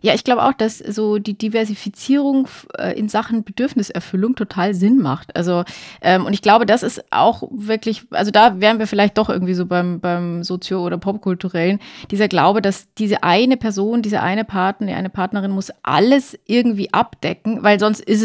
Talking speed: 180 wpm